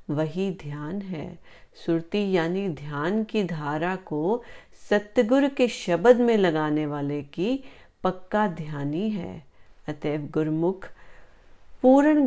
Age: 40-59